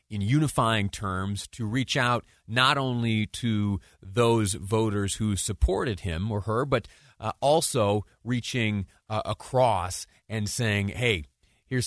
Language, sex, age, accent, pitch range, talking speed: English, male, 30-49, American, 95-115 Hz, 130 wpm